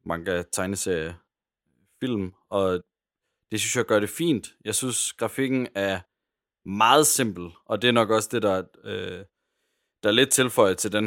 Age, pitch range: 30-49, 95-120 Hz